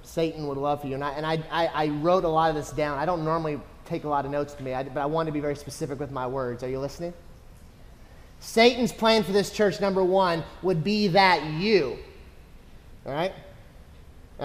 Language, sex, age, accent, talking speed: English, male, 30-49, American, 230 wpm